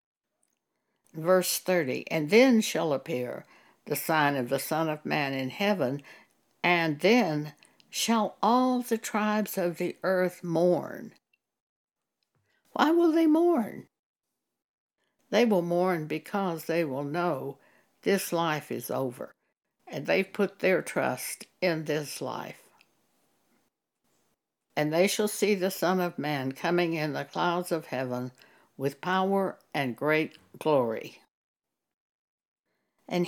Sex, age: female, 60-79